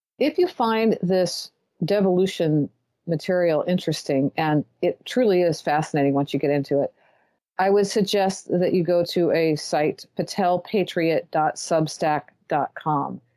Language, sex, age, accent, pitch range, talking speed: English, female, 40-59, American, 150-185 Hz, 120 wpm